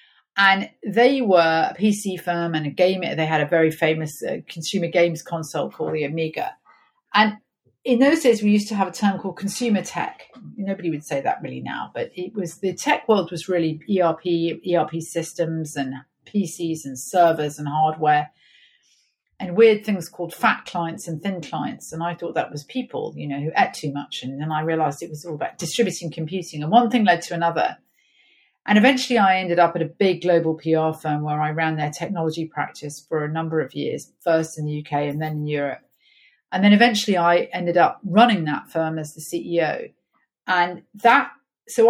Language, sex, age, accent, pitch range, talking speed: English, female, 40-59, British, 155-195 Hz, 200 wpm